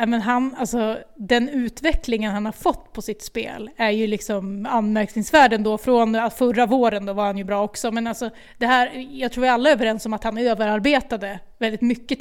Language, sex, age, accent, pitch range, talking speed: Swedish, female, 30-49, native, 225-260 Hz, 185 wpm